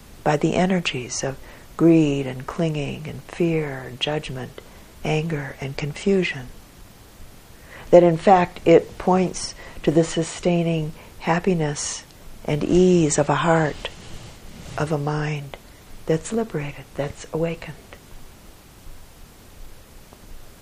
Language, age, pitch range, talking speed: English, 60-79, 145-175 Hz, 100 wpm